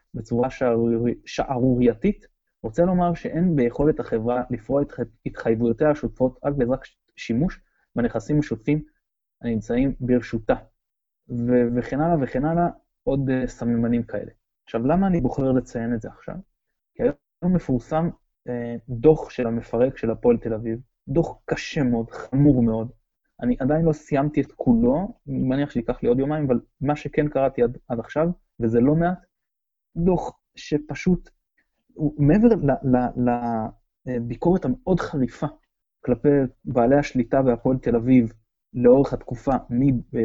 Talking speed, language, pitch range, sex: 130 wpm, Hebrew, 120-150 Hz, male